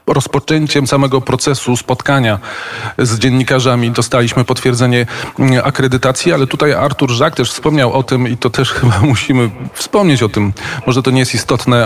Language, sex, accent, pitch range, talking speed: Polish, male, native, 120-140 Hz, 150 wpm